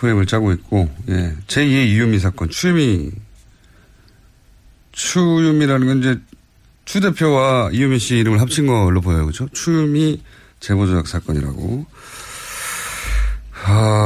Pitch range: 100-150 Hz